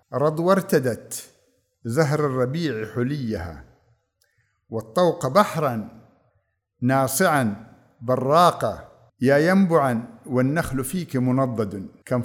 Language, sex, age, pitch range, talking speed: Arabic, male, 50-69, 120-155 Hz, 75 wpm